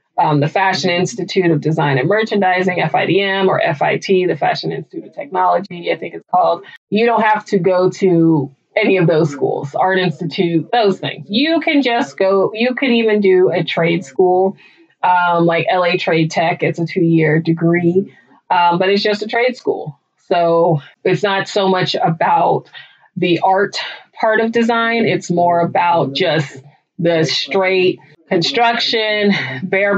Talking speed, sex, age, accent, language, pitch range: 160 wpm, female, 20-39, American, English, 170-195 Hz